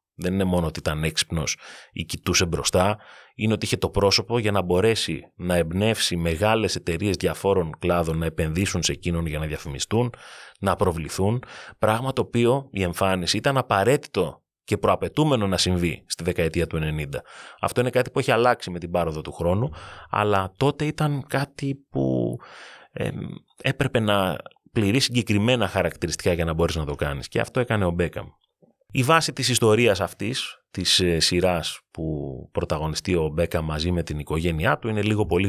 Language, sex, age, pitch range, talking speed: Greek, male, 30-49, 85-110 Hz, 165 wpm